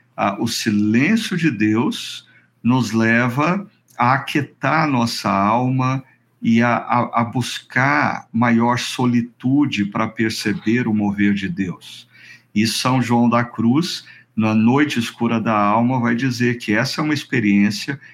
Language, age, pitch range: Portuguese, 50-69, 110-145 Hz